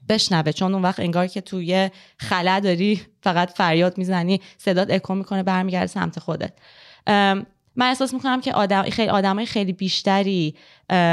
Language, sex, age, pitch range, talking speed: Persian, female, 20-39, 175-205 Hz, 150 wpm